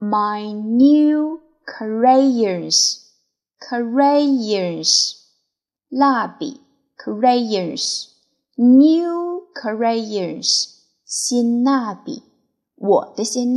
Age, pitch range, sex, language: 20-39, 210-275 Hz, female, Chinese